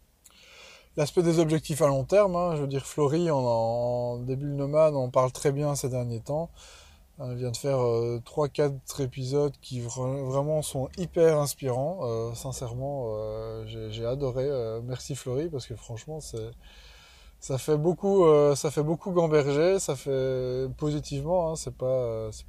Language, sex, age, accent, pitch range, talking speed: French, male, 20-39, French, 120-145 Hz, 175 wpm